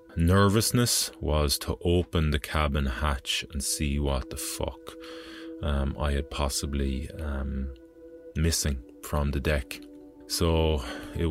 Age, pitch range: 20-39, 75-85 Hz